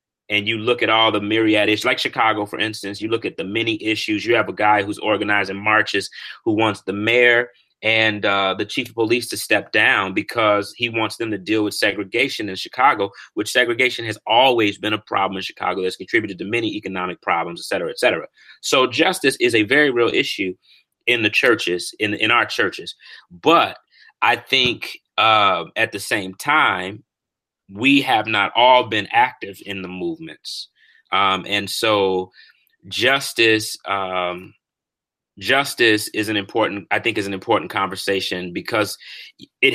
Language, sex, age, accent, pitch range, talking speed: English, male, 30-49, American, 100-115 Hz, 175 wpm